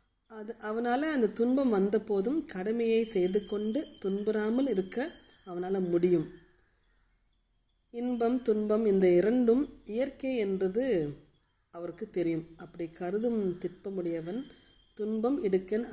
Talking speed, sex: 90 wpm, female